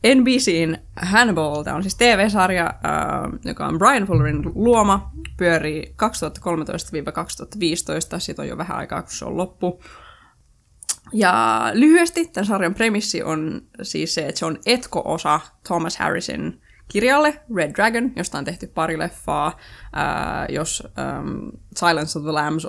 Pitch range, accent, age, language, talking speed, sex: 160-210 Hz, native, 20-39, Finnish, 130 wpm, female